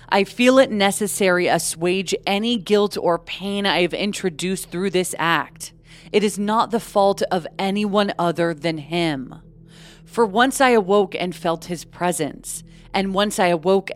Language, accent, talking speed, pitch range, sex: English, American, 160 wpm, 160-205 Hz, female